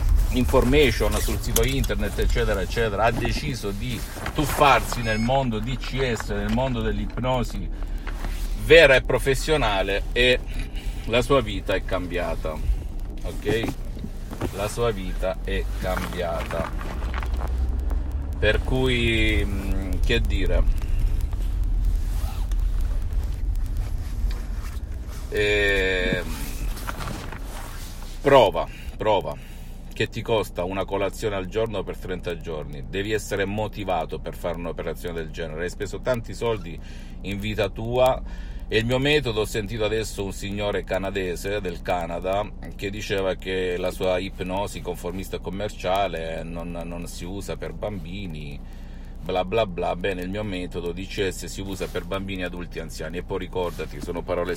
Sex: male